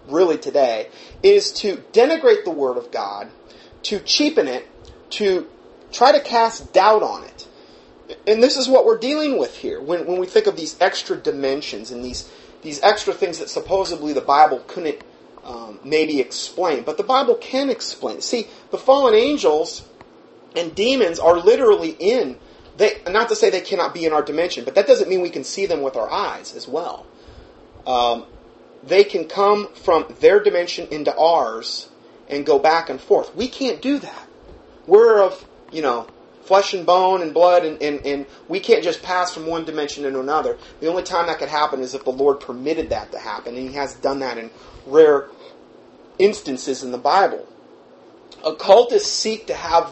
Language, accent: English, American